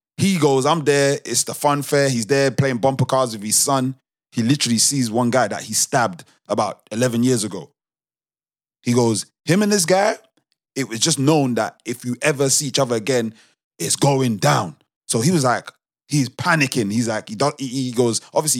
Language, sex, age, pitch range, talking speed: English, male, 20-39, 115-150 Hz, 195 wpm